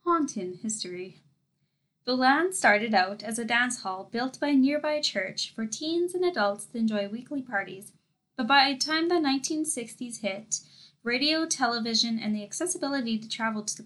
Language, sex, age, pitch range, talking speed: English, female, 10-29, 210-280 Hz, 170 wpm